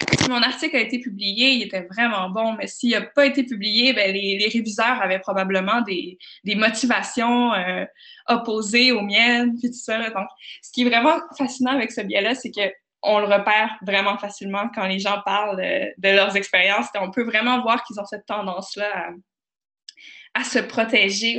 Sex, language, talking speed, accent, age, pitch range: female, French, 185 wpm, Canadian, 20-39, 195-240 Hz